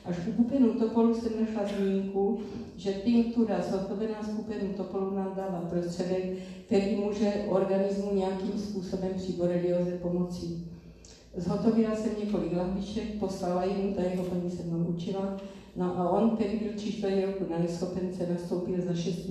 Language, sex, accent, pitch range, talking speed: Czech, female, native, 180-205 Hz, 145 wpm